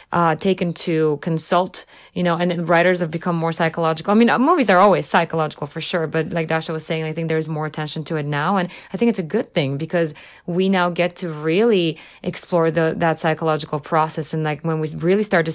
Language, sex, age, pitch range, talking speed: English, female, 20-39, 155-175 Hz, 230 wpm